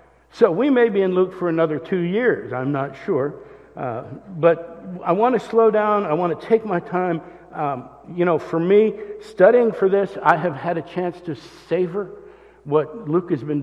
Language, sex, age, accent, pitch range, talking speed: English, male, 60-79, American, 160-240 Hz, 200 wpm